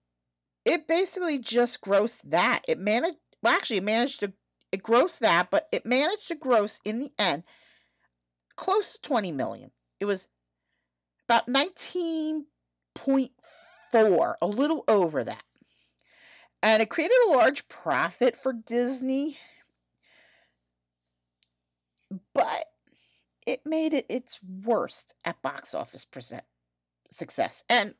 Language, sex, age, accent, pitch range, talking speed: English, female, 40-59, American, 155-240 Hz, 120 wpm